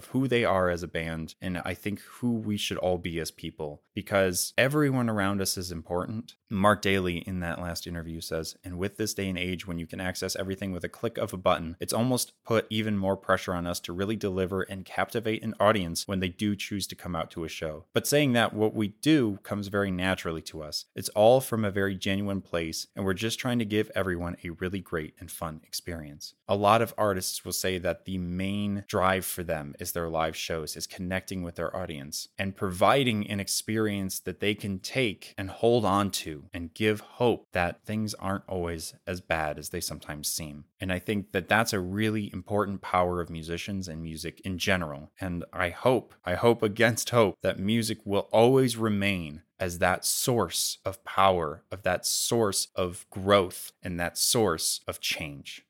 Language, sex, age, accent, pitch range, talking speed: English, male, 20-39, American, 85-105 Hz, 205 wpm